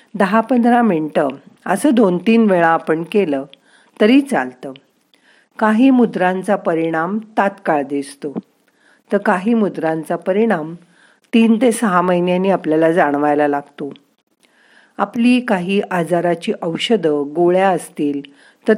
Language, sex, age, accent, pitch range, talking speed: Marathi, female, 50-69, native, 165-225 Hz, 110 wpm